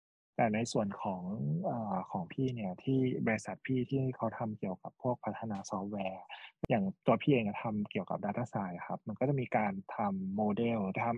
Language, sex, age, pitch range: Thai, male, 20-39, 110-135 Hz